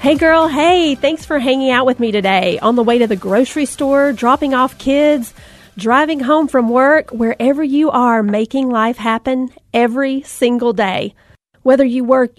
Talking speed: 175 wpm